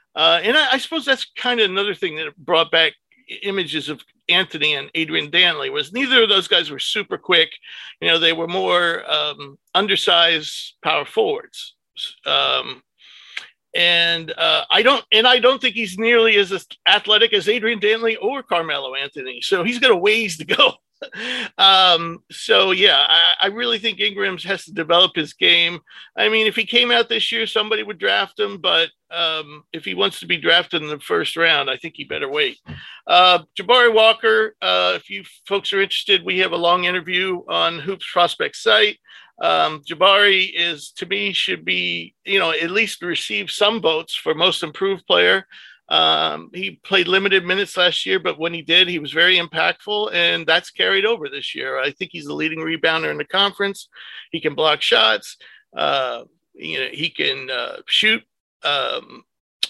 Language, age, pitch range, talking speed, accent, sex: English, 50-69, 165-225 Hz, 185 wpm, American, male